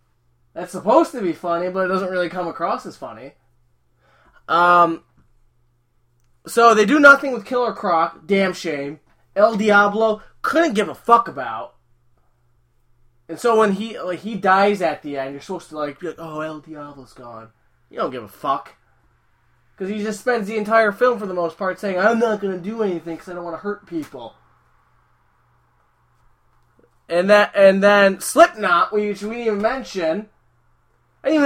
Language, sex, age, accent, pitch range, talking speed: English, male, 20-39, American, 150-215 Hz, 175 wpm